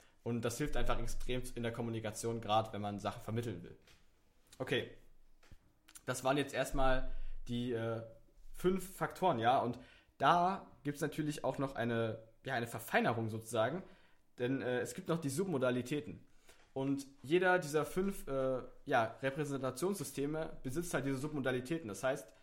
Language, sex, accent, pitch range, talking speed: German, male, German, 120-145 Hz, 150 wpm